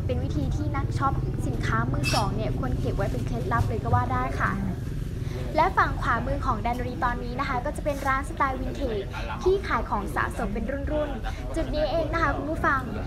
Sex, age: female, 10-29